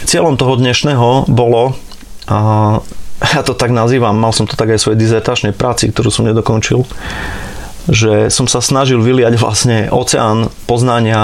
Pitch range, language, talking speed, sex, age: 110-120 Hz, Slovak, 155 wpm, male, 30-49